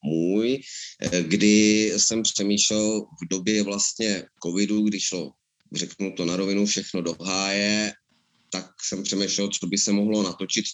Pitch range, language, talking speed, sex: 90-100 Hz, Czech, 140 wpm, male